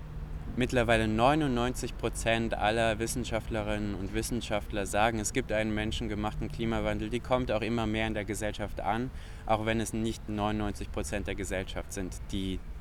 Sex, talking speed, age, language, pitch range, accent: male, 150 wpm, 20-39, German, 90-110 Hz, German